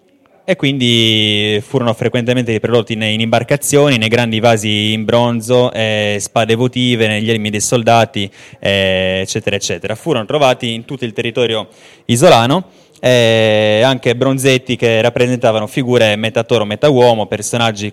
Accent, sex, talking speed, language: native, male, 125 wpm, Italian